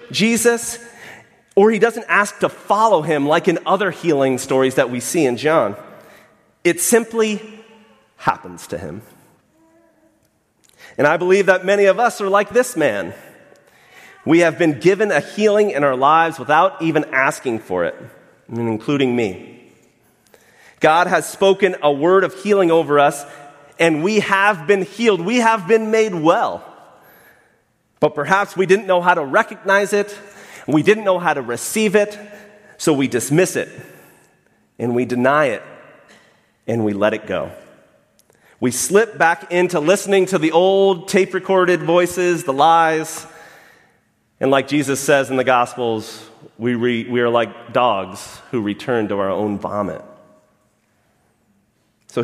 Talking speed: 150 wpm